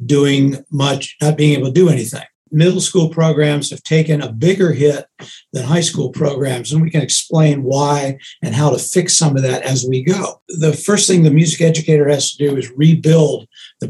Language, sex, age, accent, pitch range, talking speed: English, male, 60-79, American, 140-165 Hz, 205 wpm